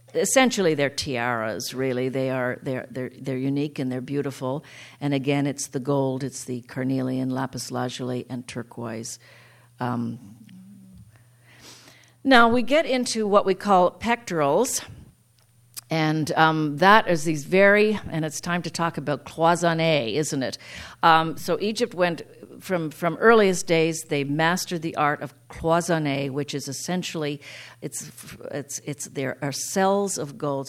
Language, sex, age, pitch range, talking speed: English, female, 50-69, 135-180 Hz, 145 wpm